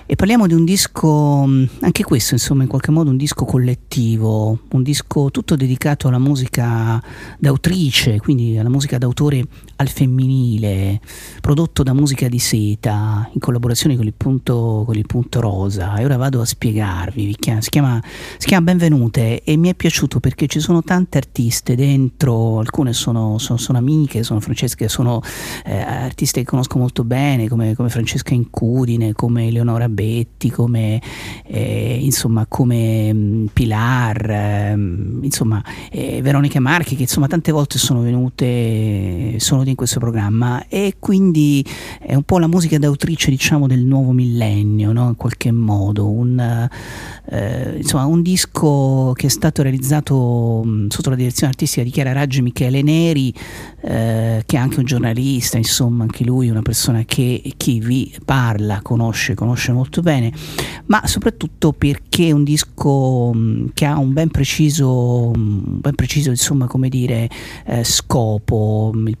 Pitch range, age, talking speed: 115-140 Hz, 40-59, 150 wpm